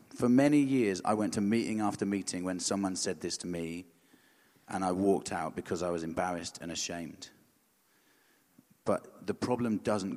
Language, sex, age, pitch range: English, male, 30-49, 95-115 Hz